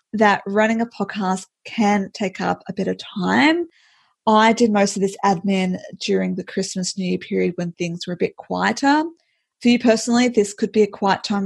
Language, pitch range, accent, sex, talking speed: English, 185-230 Hz, Australian, female, 200 wpm